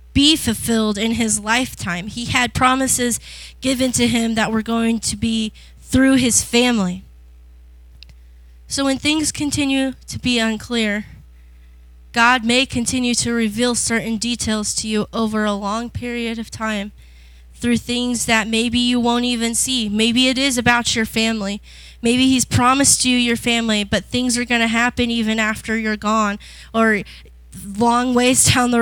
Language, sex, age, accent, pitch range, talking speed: English, female, 10-29, American, 215-255 Hz, 160 wpm